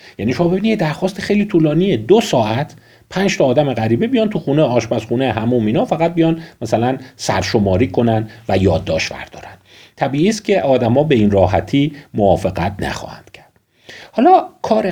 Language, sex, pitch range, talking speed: Persian, male, 100-160 Hz, 155 wpm